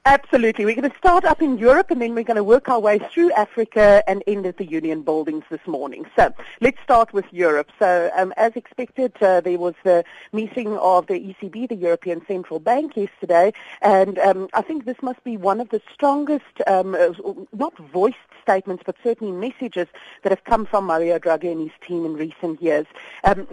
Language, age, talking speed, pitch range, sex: English, 40-59, 200 wpm, 165-220 Hz, female